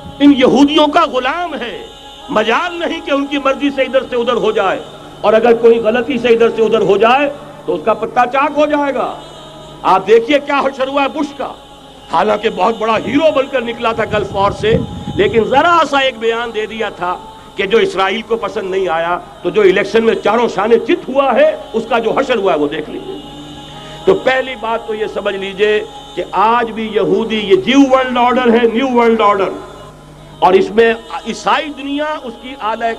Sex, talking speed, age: male, 125 wpm, 60-79